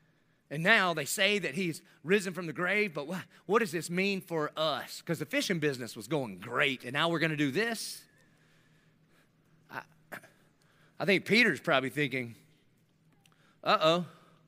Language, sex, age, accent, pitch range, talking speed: English, male, 30-49, American, 150-195 Hz, 160 wpm